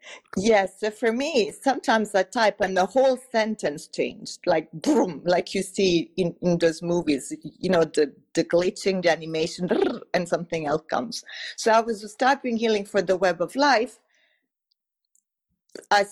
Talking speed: 170 wpm